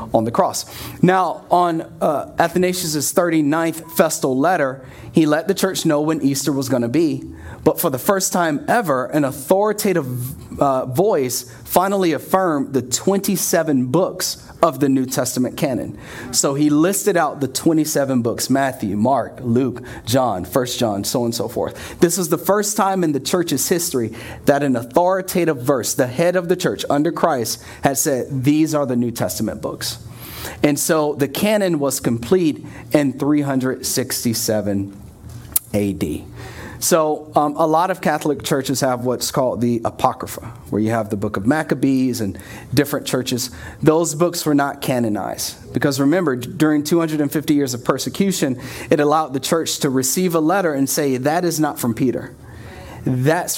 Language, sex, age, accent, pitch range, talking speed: English, male, 30-49, American, 125-165 Hz, 165 wpm